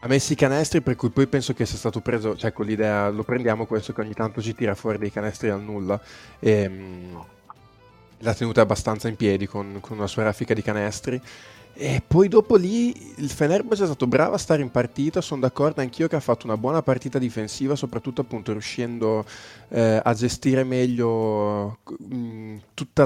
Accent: native